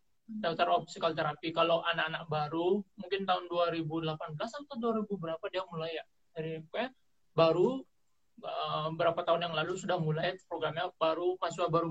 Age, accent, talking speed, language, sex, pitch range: 30-49, native, 145 wpm, Indonesian, male, 160-190 Hz